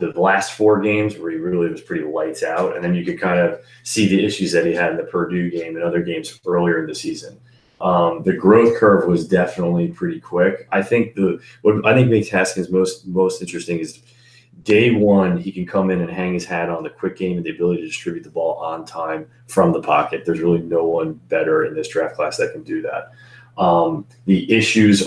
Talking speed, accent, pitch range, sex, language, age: 230 wpm, American, 85-120 Hz, male, English, 20-39